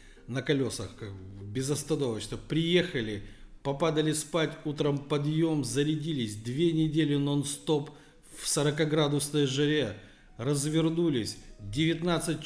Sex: male